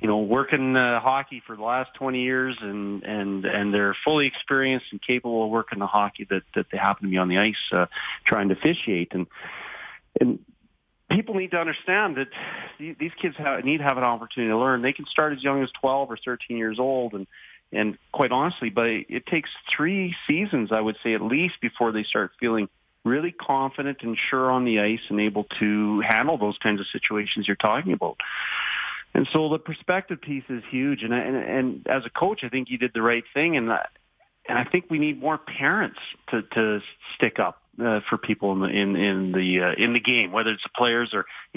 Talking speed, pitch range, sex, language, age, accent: 220 wpm, 110-140 Hz, male, English, 40-59, American